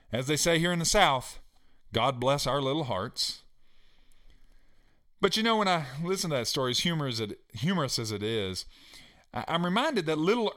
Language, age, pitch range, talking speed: English, 40-59, 120-185 Hz, 170 wpm